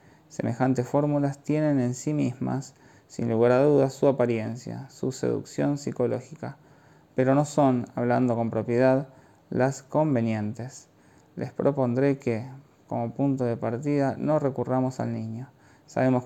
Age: 20-39